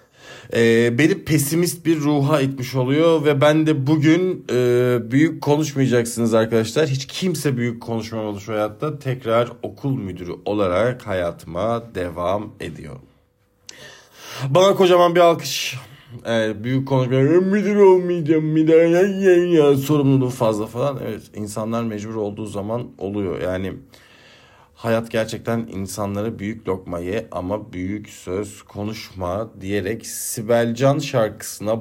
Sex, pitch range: male, 110-140 Hz